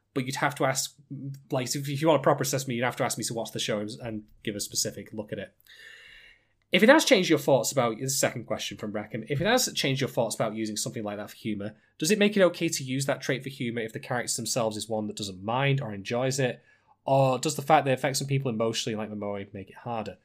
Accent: British